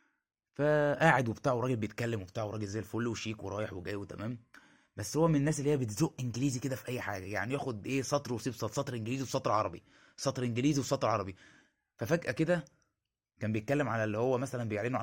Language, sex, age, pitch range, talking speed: Arabic, male, 20-39, 110-145 Hz, 190 wpm